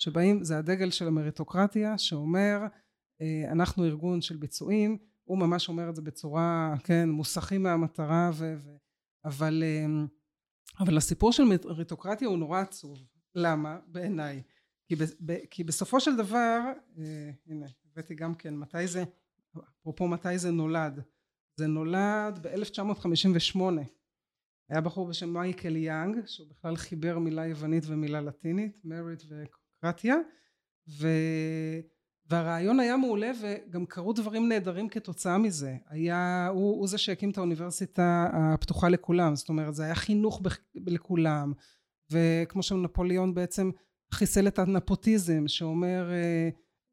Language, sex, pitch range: Hebrew, male, 160-195 Hz